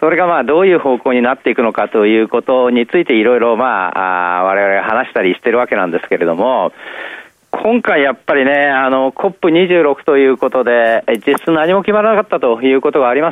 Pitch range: 120-185 Hz